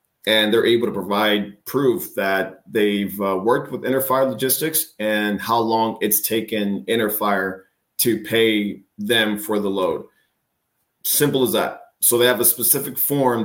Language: English